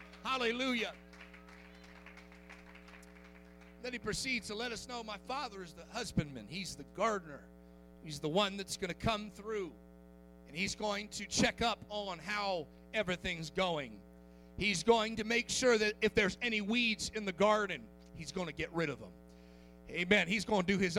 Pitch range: 170-230 Hz